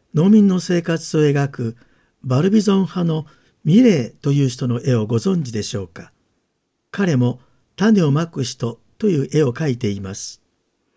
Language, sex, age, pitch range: Japanese, male, 50-69, 125-165 Hz